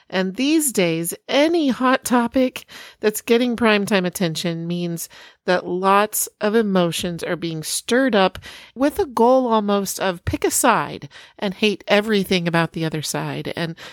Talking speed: 150 wpm